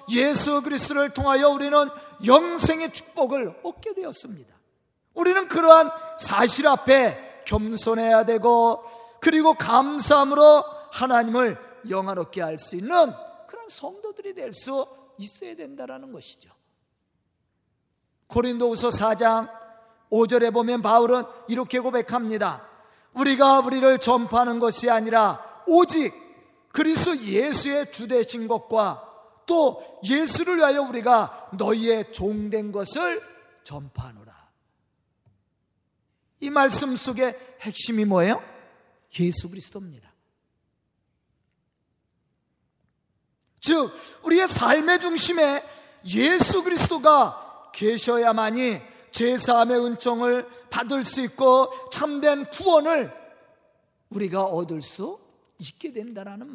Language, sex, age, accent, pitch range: Korean, male, 40-59, native, 225-295 Hz